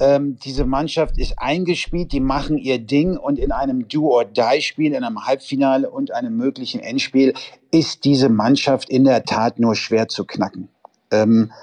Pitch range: 120-140 Hz